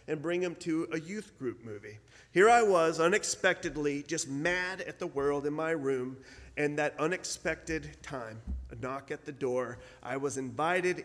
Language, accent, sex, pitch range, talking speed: English, American, male, 130-170 Hz, 175 wpm